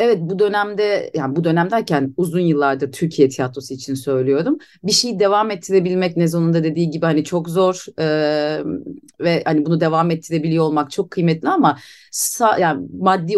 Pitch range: 160-220 Hz